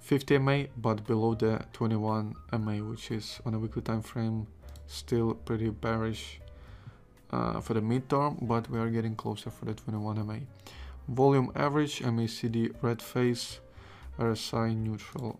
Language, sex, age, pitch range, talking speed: English, male, 20-39, 110-125 Hz, 135 wpm